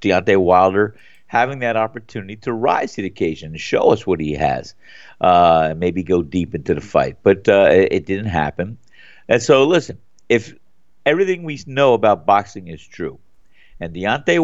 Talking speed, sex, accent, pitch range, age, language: 170 wpm, male, American, 105-145 Hz, 50-69, English